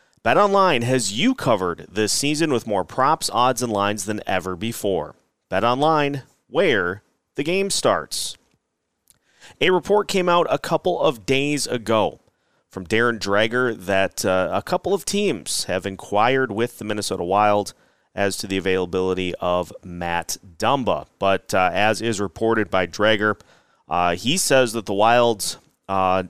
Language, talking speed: English, 155 wpm